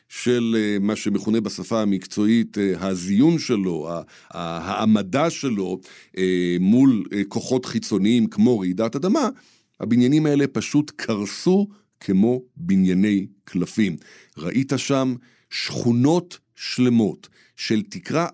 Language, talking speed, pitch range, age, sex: Hebrew, 90 wpm, 100-125 Hz, 50-69, male